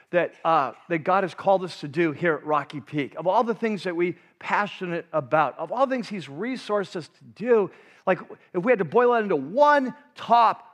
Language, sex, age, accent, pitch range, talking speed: English, male, 40-59, American, 160-210 Hz, 225 wpm